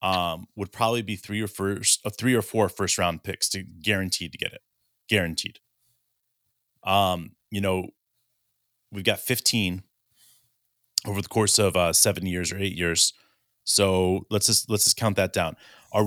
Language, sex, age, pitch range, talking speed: English, male, 30-49, 95-115 Hz, 170 wpm